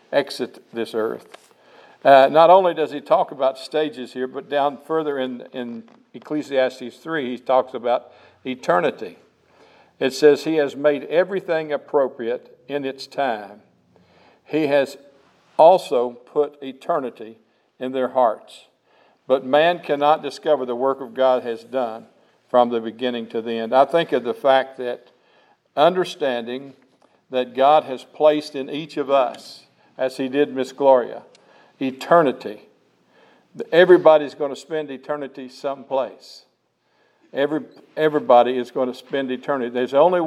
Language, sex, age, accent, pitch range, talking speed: English, male, 60-79, American, 125-145 Hz, 140 wpm